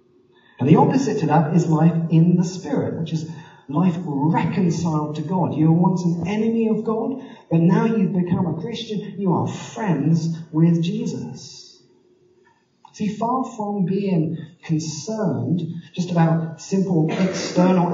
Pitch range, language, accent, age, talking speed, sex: 150-195 Hz, English, British, 40-59, 145 wpm, male